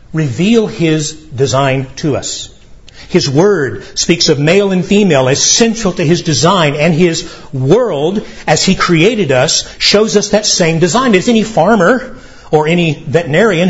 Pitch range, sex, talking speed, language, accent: 135-180 Hz, male, 155 wpm, English, American